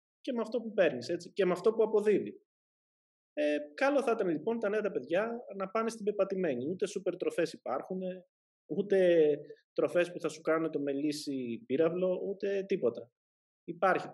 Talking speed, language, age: 170 wpm, Greek, 20-39